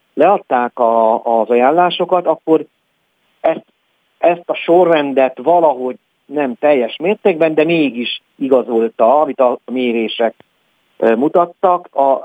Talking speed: 105 wpm